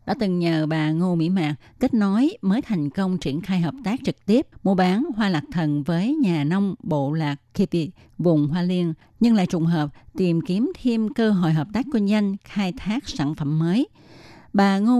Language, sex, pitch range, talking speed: Vietnamese, female, 155-205 Hz, 210 wpm